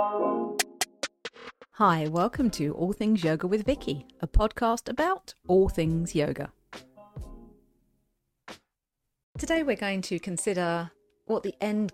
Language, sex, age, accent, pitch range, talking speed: English, female, 40-59, British, 160-215 Hz, 110 wpm